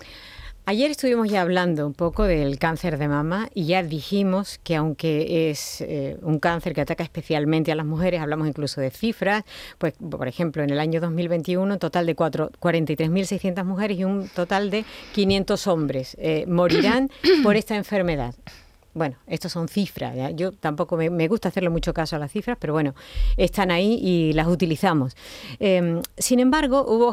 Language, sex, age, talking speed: Spanish, female, 50-69, 175 wpm